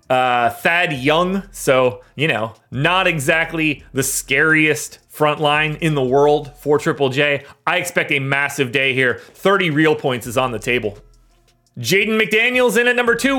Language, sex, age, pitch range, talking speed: English, male, 30-49, 145-190 Hz, 165 wpm